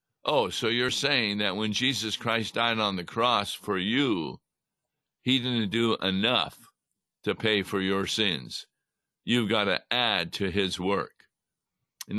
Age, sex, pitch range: 60-79, male, 110-145 Hz